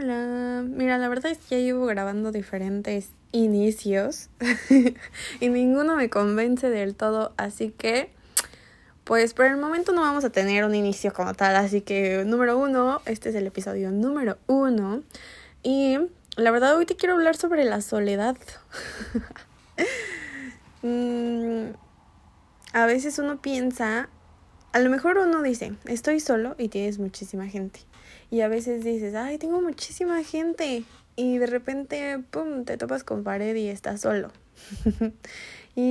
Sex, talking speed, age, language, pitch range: female, 145 wpm, 20-39, Spanish, 205-255 Hz